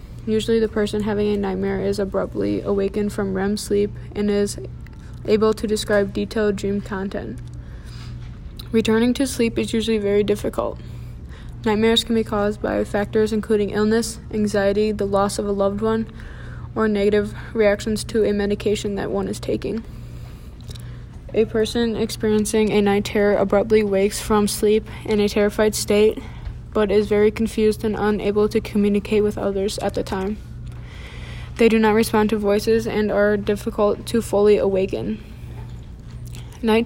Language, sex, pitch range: English, female, 200-220 Hz